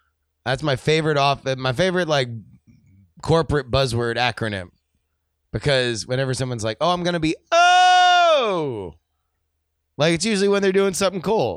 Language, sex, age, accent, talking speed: English, male, 30-49, American, 140 wpm